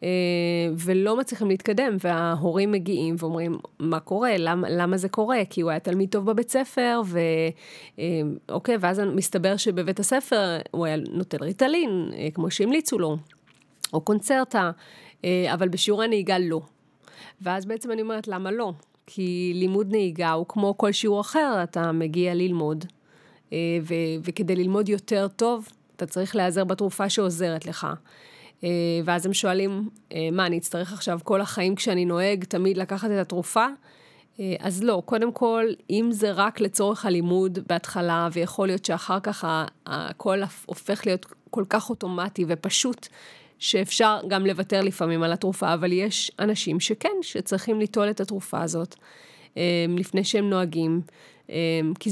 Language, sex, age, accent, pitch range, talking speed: Hebrew, female, 30-49, Italian, 170-210 Hz, 145 wpm